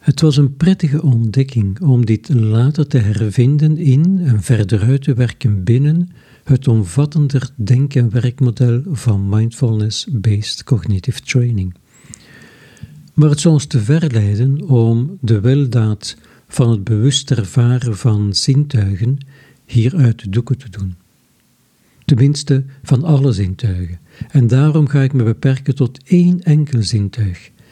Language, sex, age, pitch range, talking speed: Dutch, male, 60-79, 110-140 Hz, 130 wpm